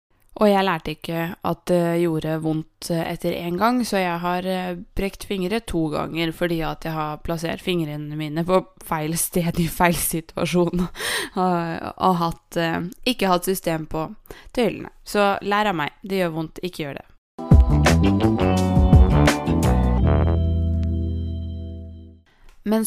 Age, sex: 20-39, female